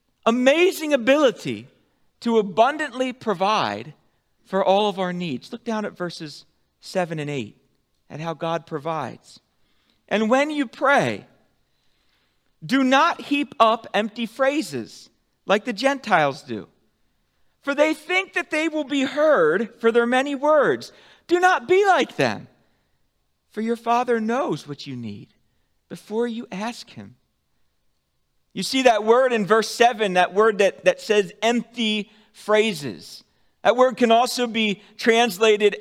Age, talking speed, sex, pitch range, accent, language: 40-59, 140 wpm, male, 180-260 Hz, American, English